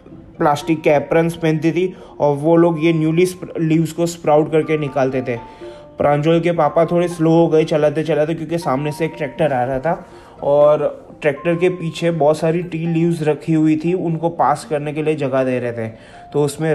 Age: 20-39